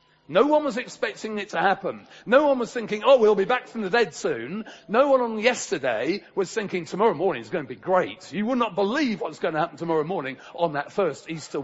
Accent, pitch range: British, 160-225 Hz